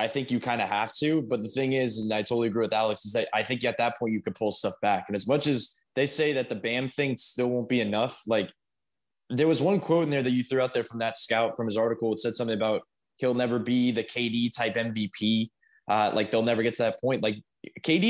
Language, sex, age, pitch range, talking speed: English, male, 20-39, 115-145 Hz, 270 wpm